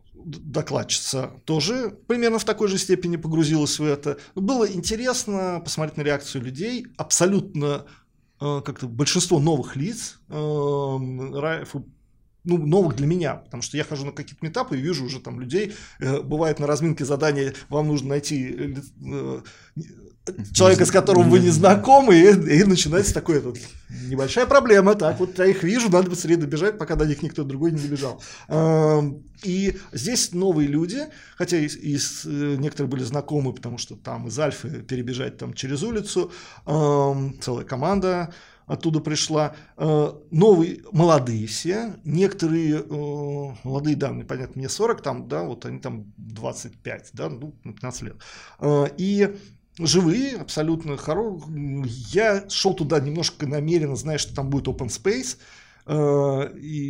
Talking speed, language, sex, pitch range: 145 wpm, Russian, male, 140-185 Hz